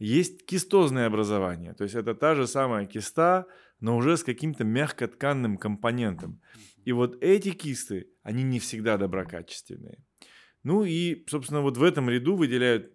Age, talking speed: 20-39, 150 wpm